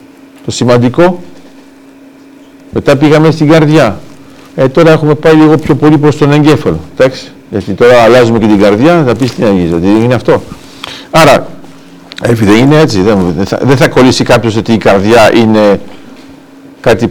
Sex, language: male, Greek